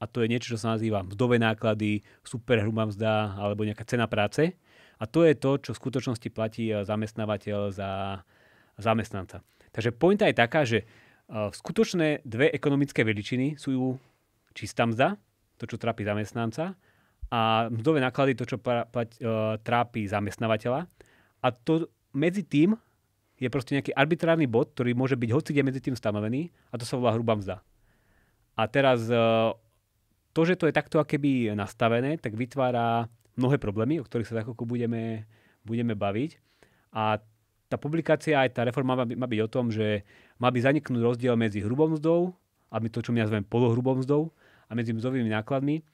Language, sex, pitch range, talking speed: Slovak, male, 110-130 Hz, 165 wpm